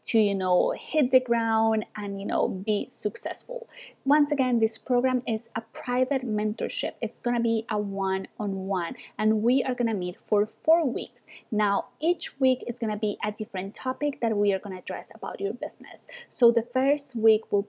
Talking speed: 185 wpm